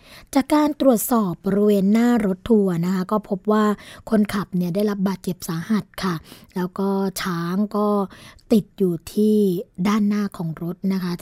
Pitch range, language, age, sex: 185-215 Hz, Thai, 20-39, female